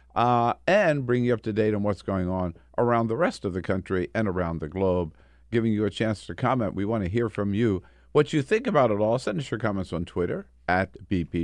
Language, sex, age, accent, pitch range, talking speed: English, male, 50-69, American, 85-115 Hz, 245 wpm